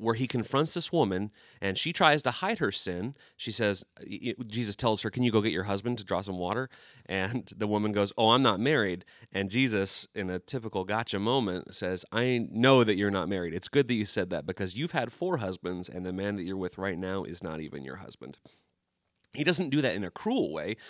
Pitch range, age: 95-120 Hz, 30-49